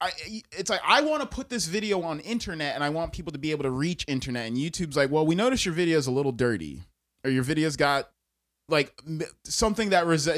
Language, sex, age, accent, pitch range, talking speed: English, male, 20-39, American, 120-190 Hz, 230 wpm